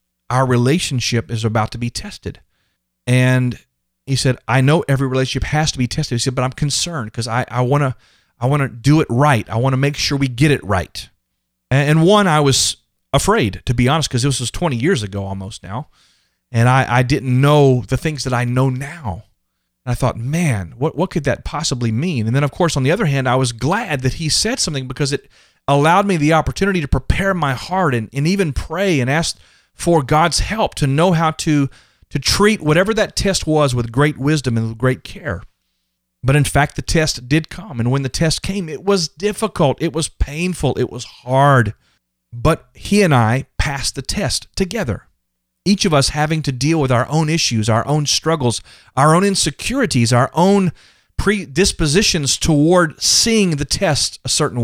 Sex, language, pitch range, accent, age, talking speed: male, English, 120-160 Hz, American, 30-49, 200 wpm